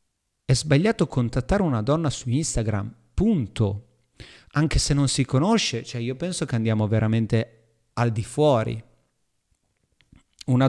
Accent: native